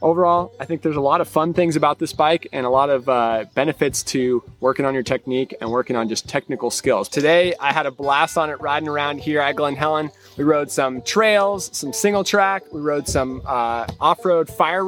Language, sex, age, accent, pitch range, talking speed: English, male, 20-39, American, 135-165 Hz, 220 wpm